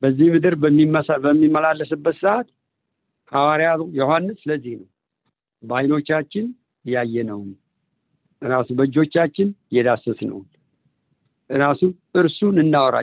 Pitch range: 150-195 Hz